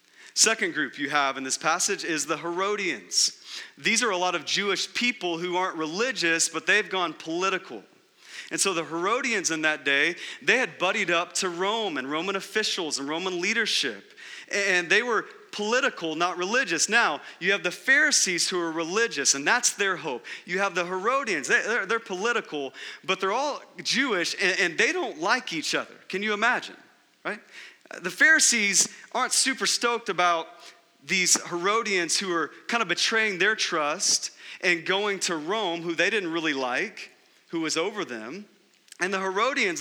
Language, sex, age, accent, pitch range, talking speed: English, male, 30-49, American, 165-200 Hz, 170 wpm